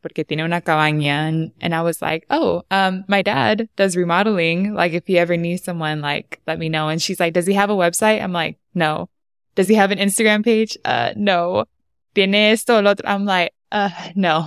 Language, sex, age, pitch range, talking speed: English, female, 20-39, 160-190 Hz, 200 wpm